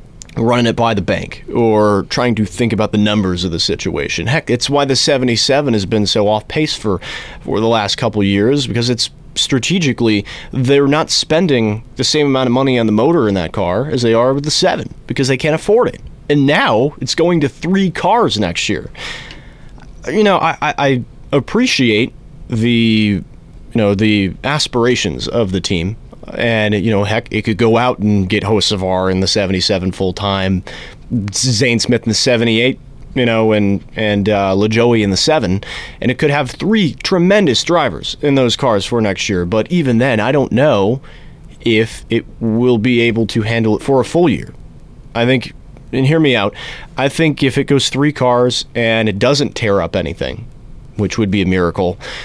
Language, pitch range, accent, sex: English, 105-140 Hz, American, male